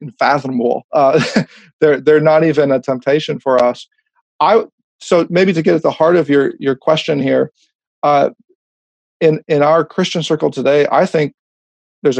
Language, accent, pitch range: English, American, 130-165 Hz